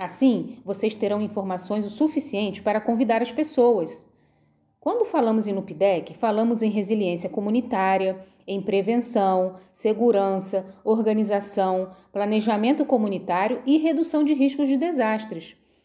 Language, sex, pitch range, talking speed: Portuguese, female, 200-260 Hz, 115 wpm